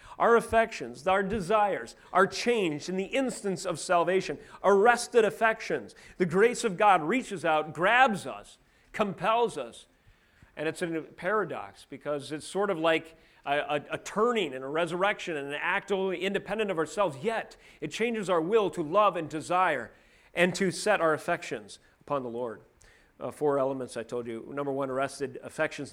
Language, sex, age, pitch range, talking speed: English, male, 40-59, 140-195 Hz, 170 wpm